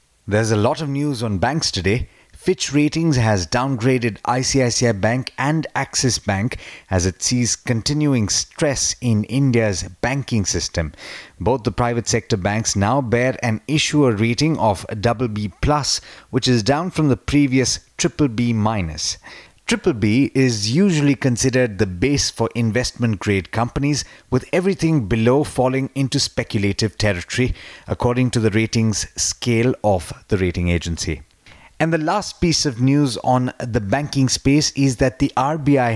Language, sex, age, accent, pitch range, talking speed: English, male, 30-49, Indian, 110-140 Hz, 145 wpm